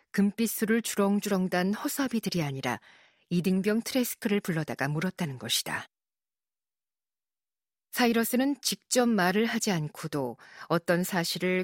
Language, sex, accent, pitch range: Korean, female, native, 170-220 Hz